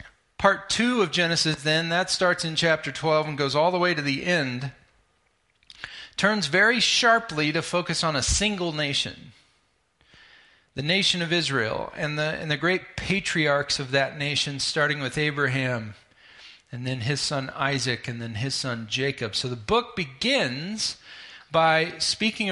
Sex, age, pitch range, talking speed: male, 40-59, 130-165 Hz, 155 wpm